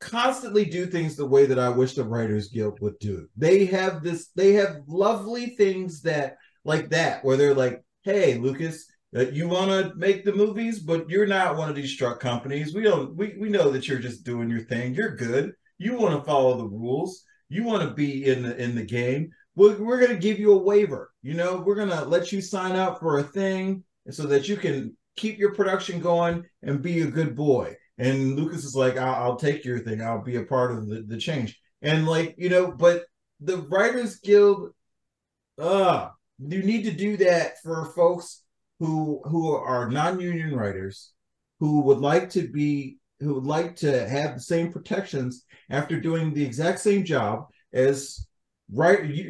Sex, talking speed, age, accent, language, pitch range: male, 195 wpm, 30-49, American, English, 130-190 Hz